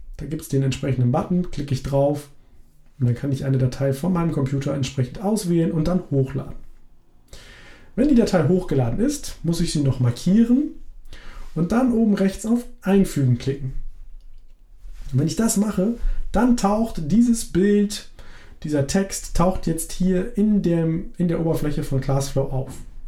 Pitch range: 135-195 Hz